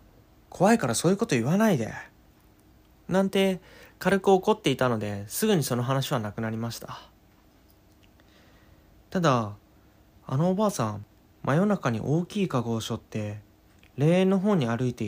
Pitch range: 100-160 Hz